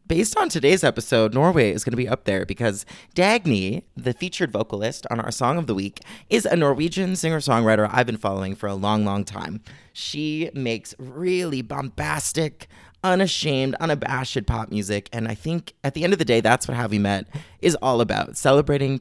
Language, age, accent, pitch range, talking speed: English, 30-49, American, 110-155 Hz, 190 wpm